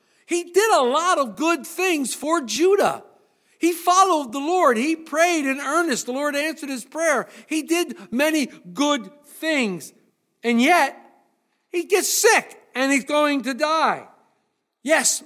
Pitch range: 240-310 Hz